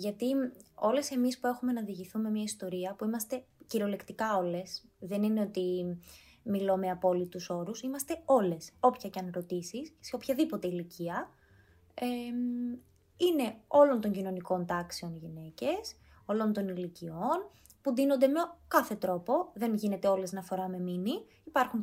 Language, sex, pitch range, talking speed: Greek, female, 180-260 Hz, 145 wpm